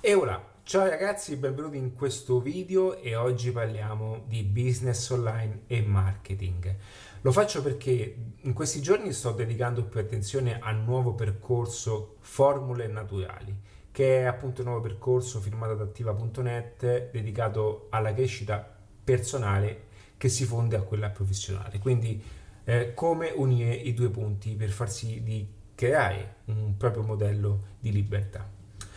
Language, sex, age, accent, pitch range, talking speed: Italian, male, 30-49, native, 105-130 Hz, 140 wpm